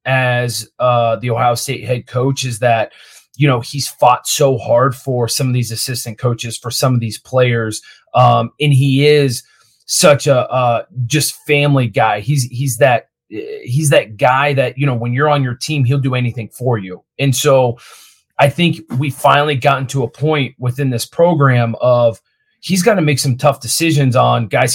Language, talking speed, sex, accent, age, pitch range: English, 190 wpm, male, American, 30-49, 120-145 Hz